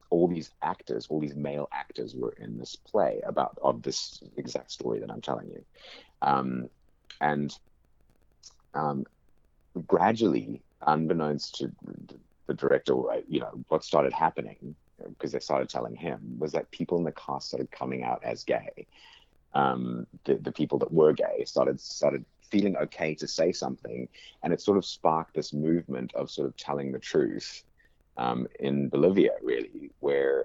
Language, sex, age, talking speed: English, male, 30-49, 160 wpm